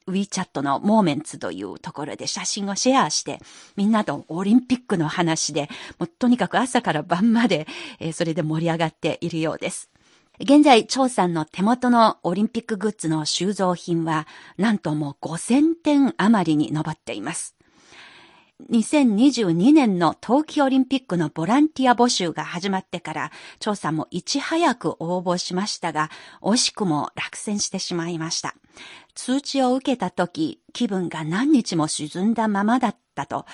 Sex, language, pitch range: female, Japanese, 165-240 Hz